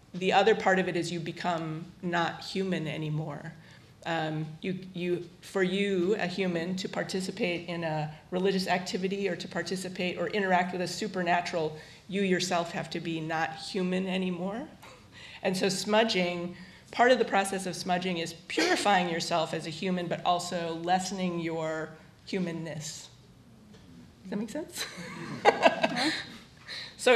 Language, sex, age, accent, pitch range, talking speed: English, female, 30-49, American, 165-195 Hz, 140 wpm